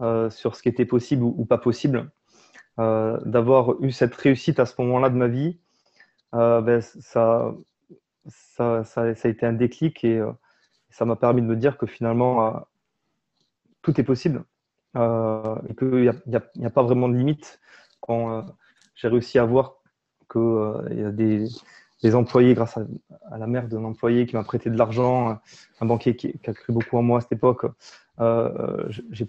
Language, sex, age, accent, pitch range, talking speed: French, male, 20-39, French, 115-130 Hz, 190 wpm